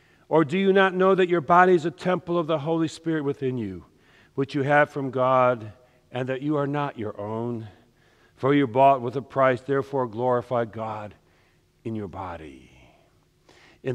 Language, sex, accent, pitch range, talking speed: English, male, American, 115-145 Hz, 180 wpm